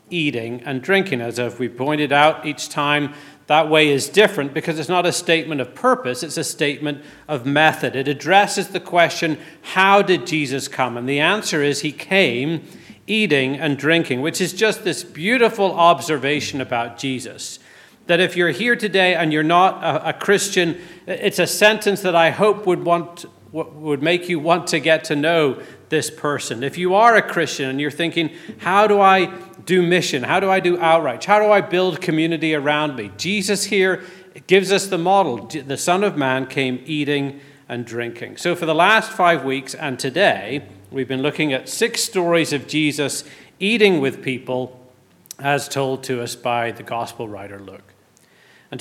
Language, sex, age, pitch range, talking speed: English, male, 40-59, 140-180 Hz, 185 wpm